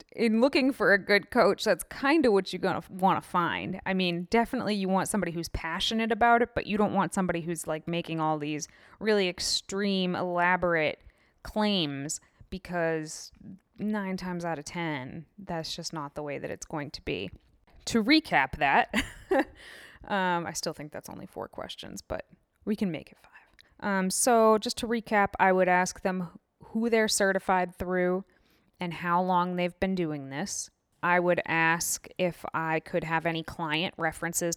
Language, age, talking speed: English, 20-39, 180 wpm